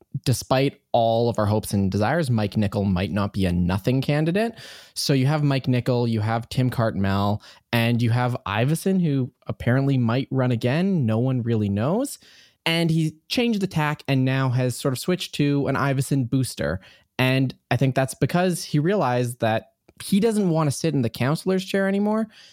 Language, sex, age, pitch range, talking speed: English, male, 20-39, 110-155 Hz, 185 wpm